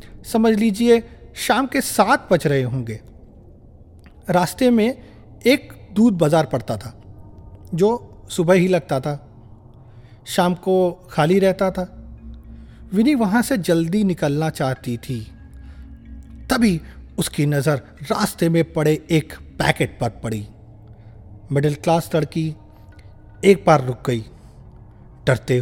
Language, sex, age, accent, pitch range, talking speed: Hindi, male, 40-59, native, 115-175 Hz, 115 wpm